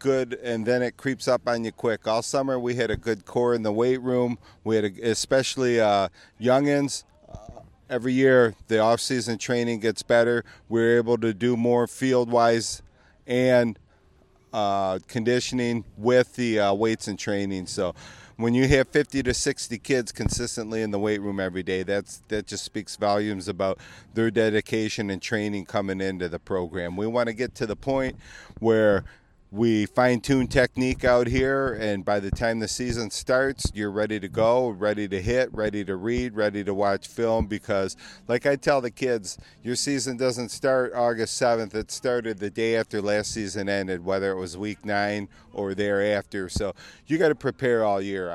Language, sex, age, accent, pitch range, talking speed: English, male, 40-59, American, 100-125 Hz, 180 wpm